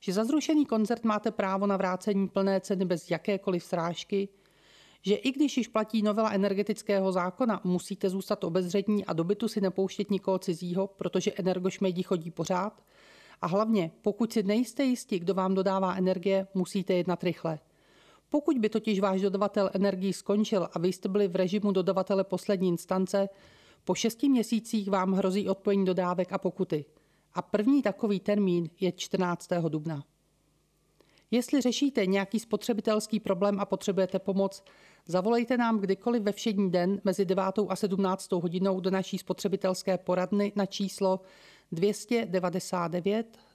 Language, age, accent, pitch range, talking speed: Czech, 40-59, native, 185-210 Hz, 145 wpm